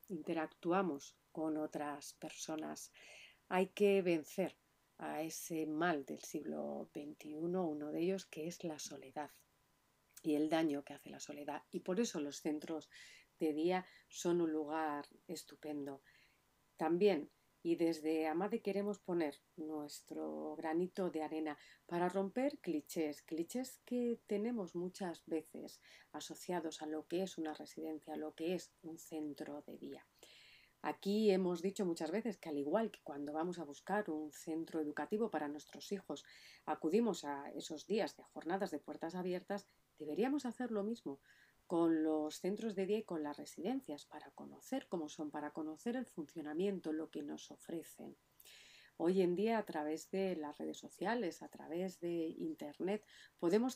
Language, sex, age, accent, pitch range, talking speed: Spanish, female, 40-59, Spanish, 150-185 Hz, 155 wpm